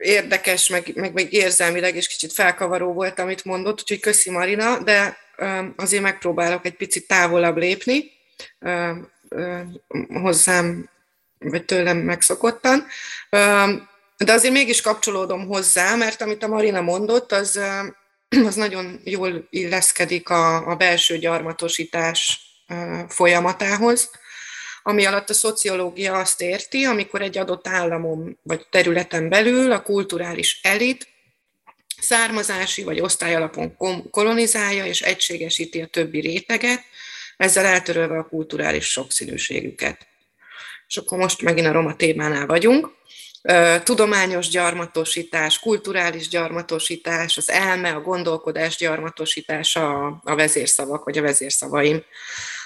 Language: Hungarian